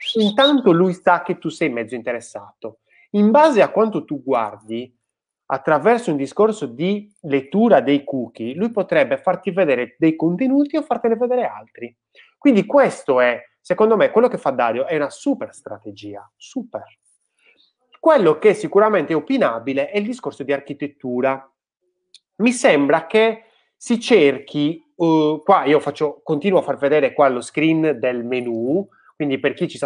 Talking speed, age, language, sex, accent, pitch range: 155 wpm, 30-49, Italian, male, native, 130-205 Hz